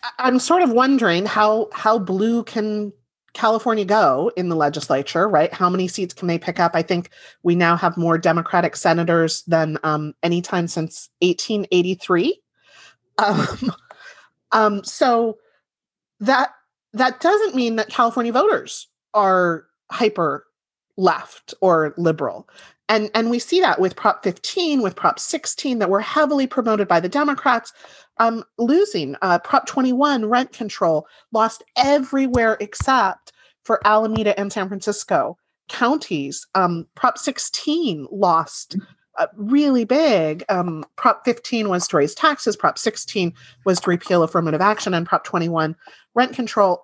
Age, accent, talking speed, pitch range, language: 30-49, American, 140 wpm, 175-245 Hz, English